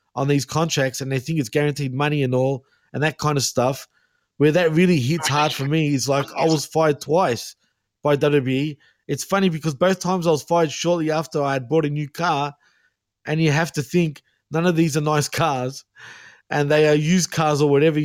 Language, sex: English, male